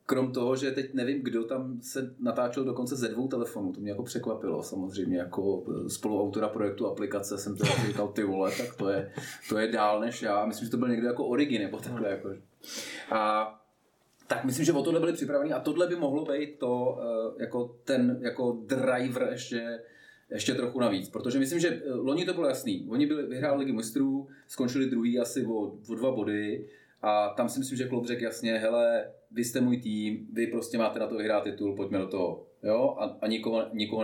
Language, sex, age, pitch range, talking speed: Czech, male, 30-49, 105-135 Hz, 200 wpm